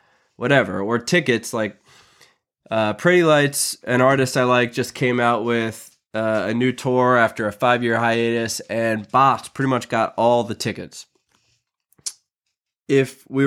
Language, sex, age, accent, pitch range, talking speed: English, male, 20-39, American, 110-130 Hz, 145 wpm